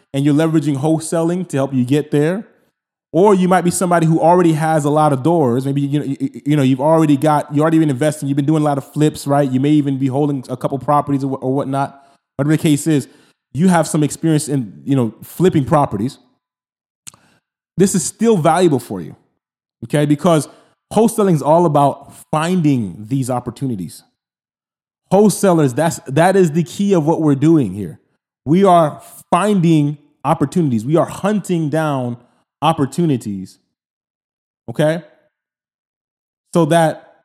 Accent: American